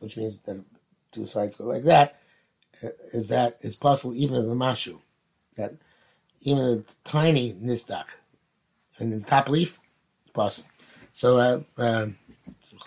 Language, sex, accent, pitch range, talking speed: English, male, American, 120-165 Hz, 145 wpm